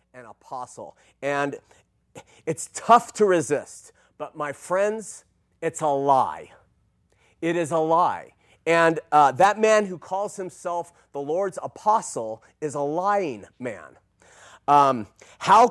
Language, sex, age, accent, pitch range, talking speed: English, male, 30-49, American, 155-220 Hz, 125 wpm